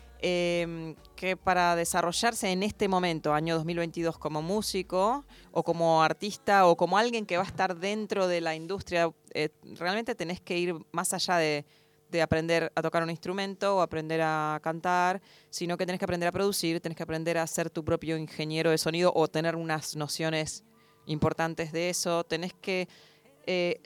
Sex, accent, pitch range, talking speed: female, Argentinian, 150-185 Hz, 175 wpm